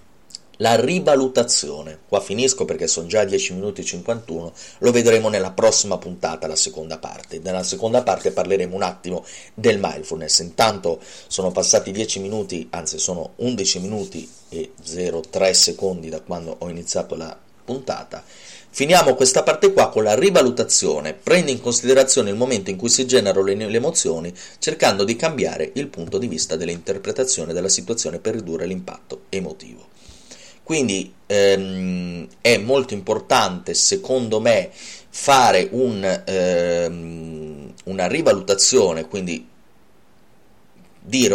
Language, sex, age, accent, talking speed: Italian, male, 30-49, native, 135 wpm